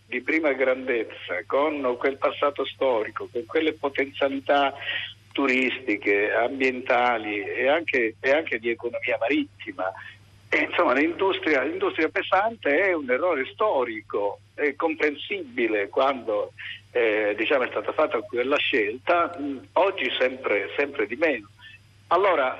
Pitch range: 120-150 Hz